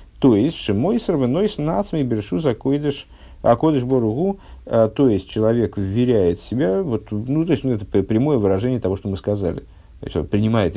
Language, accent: Russian, native